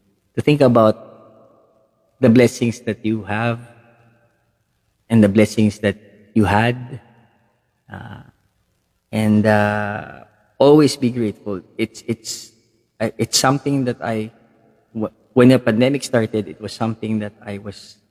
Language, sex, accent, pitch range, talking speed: English, male, Filipino, 105-120 Hz, 115 wpm